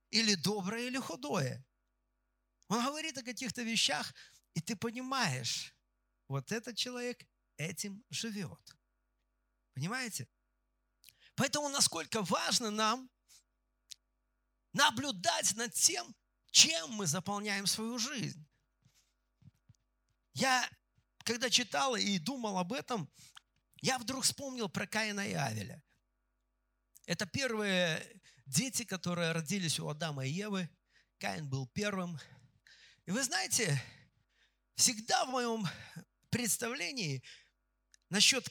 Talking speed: 100 wpm